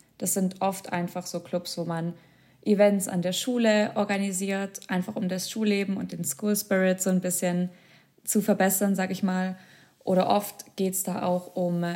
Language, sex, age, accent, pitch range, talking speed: German, female, 20-39, German, 180-205 Hz, 180 wpm